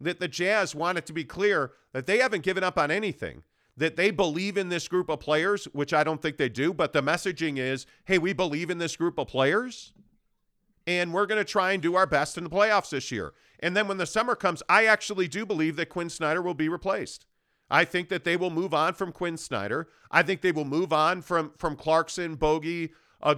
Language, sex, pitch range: English, male, 150-190 Hz